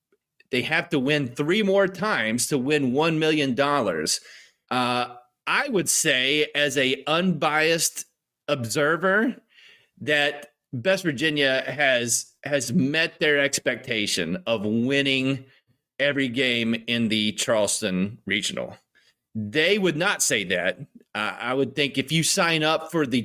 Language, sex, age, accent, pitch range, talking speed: English, male, 30-49, American, 130-175 Hz, 130 wpm